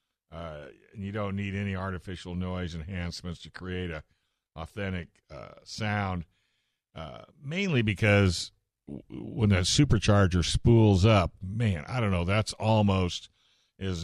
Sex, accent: male, American